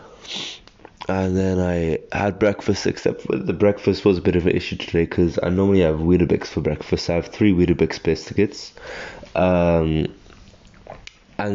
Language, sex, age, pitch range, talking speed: English, male, 20-39, 85-100 Hz, 155 wpm